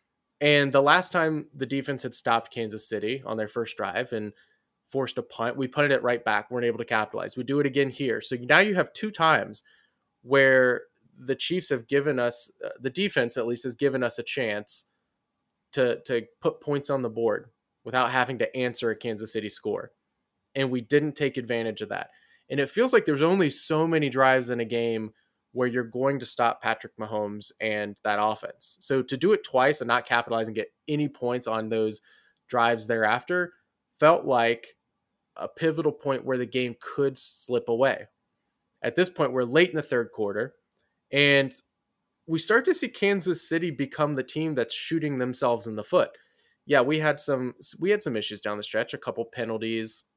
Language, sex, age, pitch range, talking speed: English, male, 20-39, 115-150 Hz, 195 wpm